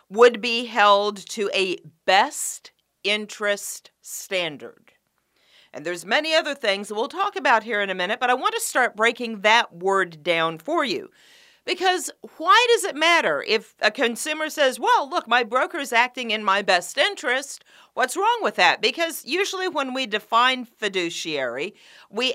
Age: 50-69